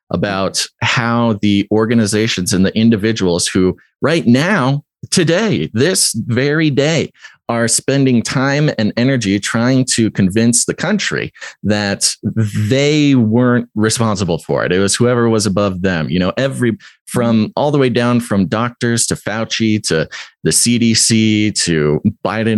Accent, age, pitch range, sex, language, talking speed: American, 30-49, 95-120 Hz, male, English, 140 wpm